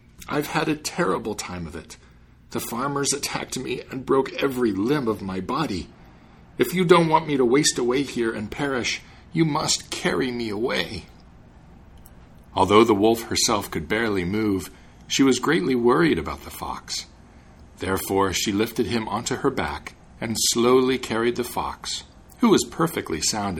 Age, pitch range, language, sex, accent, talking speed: 50-69, 80-130 Hz, English, male, American, 165 wpm